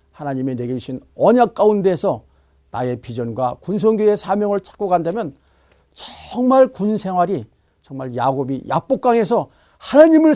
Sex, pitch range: male, 125-200 Hz